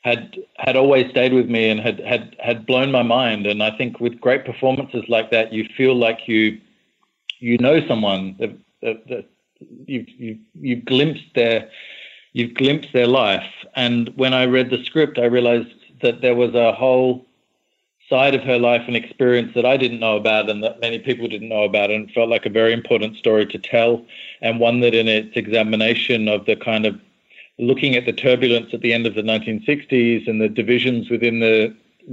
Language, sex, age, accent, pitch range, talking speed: English, male, 40-59, Australian, 110-125 Hz, 195 wpm